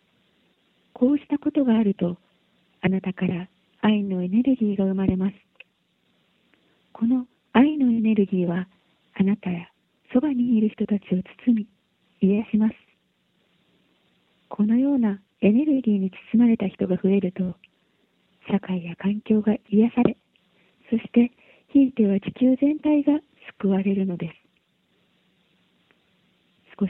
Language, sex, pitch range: Japanese, female, 190-235 Hz